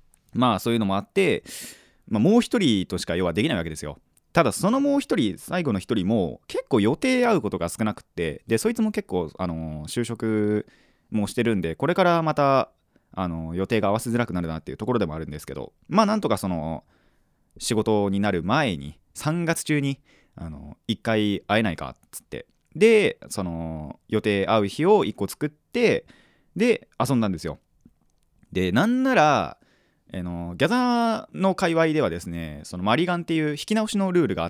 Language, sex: Japanese, male